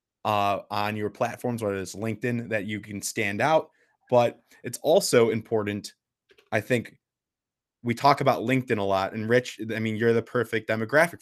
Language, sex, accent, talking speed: English, male, American, 170 wpm